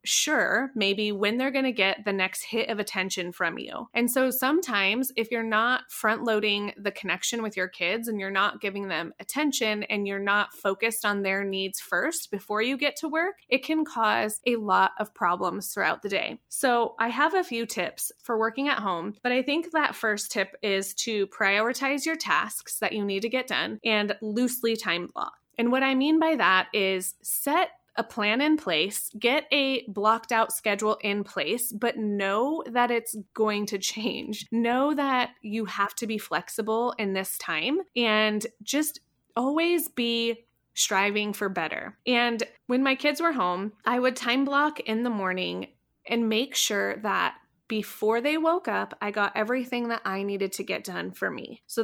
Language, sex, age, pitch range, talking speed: English, female, 20-39, 205-250 Hz, 190 wpm